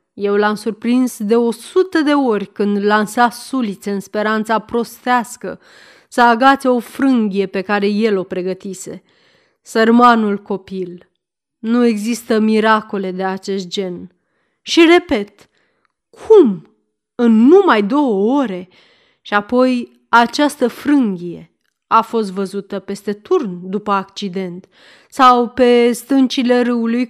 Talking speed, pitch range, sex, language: 115 wpm, 200-255 Hz, female, Romanian